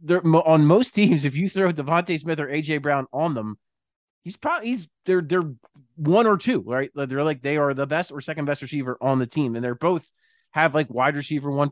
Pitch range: 125-165 Hz